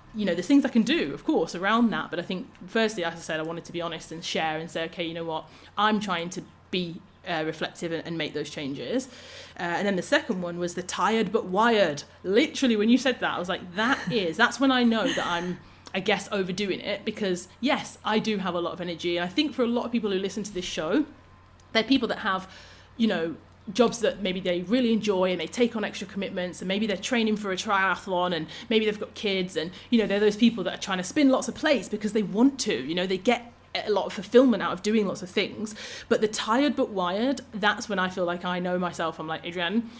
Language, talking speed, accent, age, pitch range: English, 260 wpm, British, 30-49, 175-220 Hz